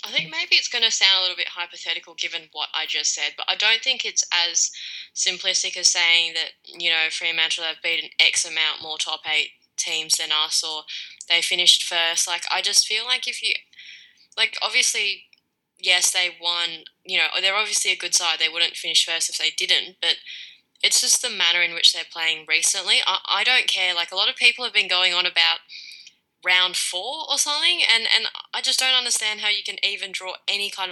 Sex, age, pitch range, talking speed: female, 10-29, 170-210 Hz, 215 wpm